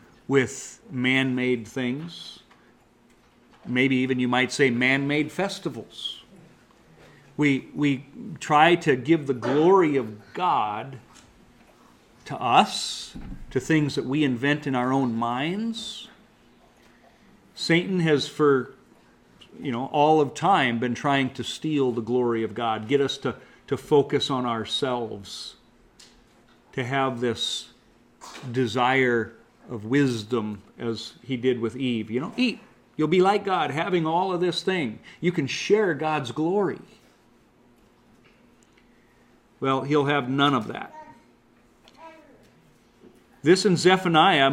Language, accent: English, American